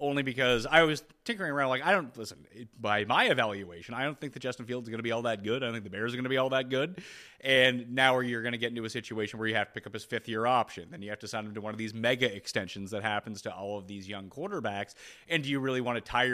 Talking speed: 310 wpm